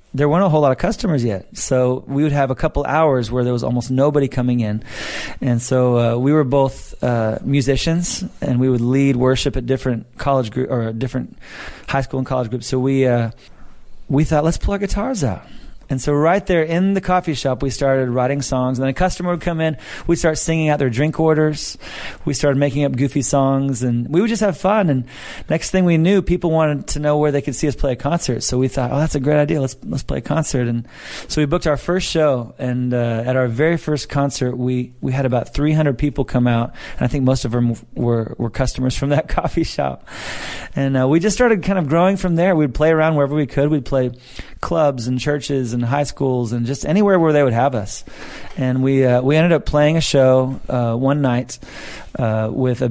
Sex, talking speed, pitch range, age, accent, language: male, 235 wpm, 125-155 Hz, 30-49, American, English